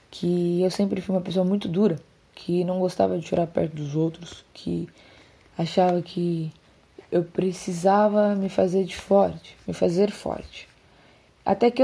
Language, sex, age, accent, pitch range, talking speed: Portuguese, female, 10-29, Brazilian, 180-220 Hz, 150 wpm